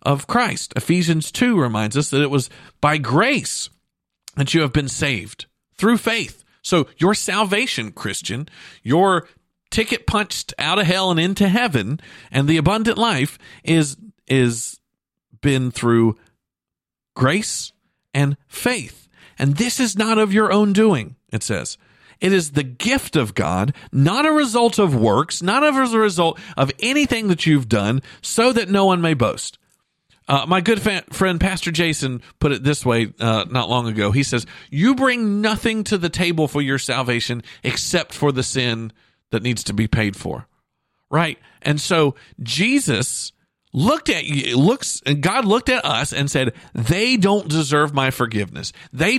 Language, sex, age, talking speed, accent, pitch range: English, male, 50-69, 160 wpm, American, 130-190 Hz